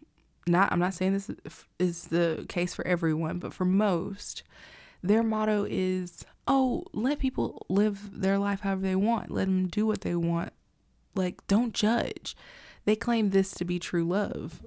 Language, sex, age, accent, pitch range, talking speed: English, female, 20-39, American, 175-205 Hz, 170 wpm